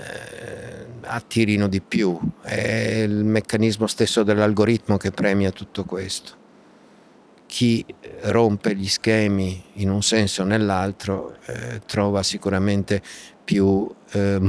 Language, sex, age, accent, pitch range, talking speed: Italian, male, 50-69, native, 100-115 Hz, 105 wpm